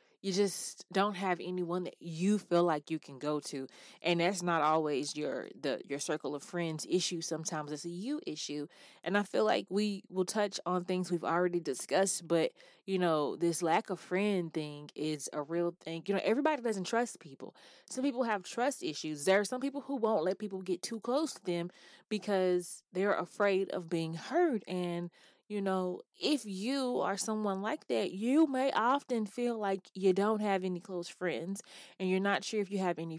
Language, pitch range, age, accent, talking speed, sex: English, 170-215 Hz, 20-39, American, 200 wpm, female